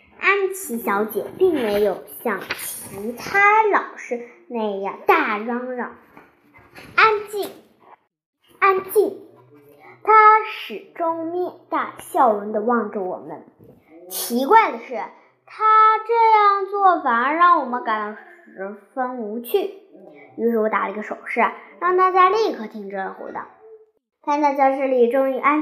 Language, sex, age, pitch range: Chinese, male, 10-29, 235-360 Hz